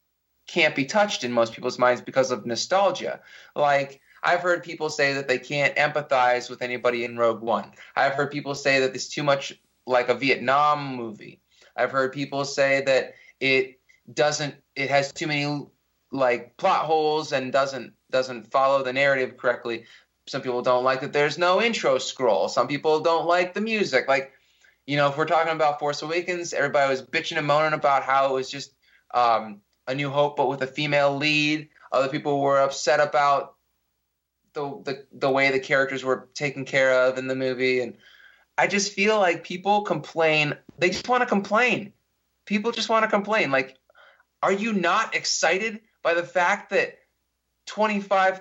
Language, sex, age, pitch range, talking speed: English, male, 20-39, 130-180 Hz, 180 wpm